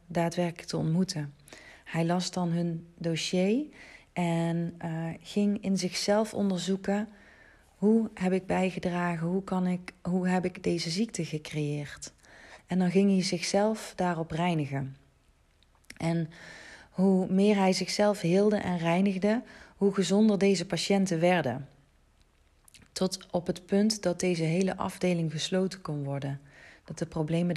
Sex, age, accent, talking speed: female, 30-49, Dutch, 135 wpm